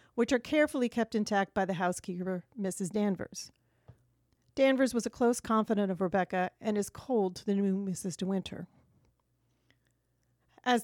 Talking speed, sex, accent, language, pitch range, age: 150 wpm, female, American, English, 195-235 Hz, 40-59